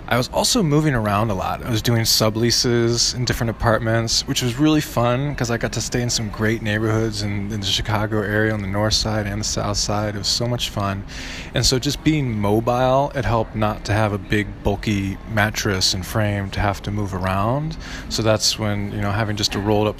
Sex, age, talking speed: male, 20-39, 230 wpm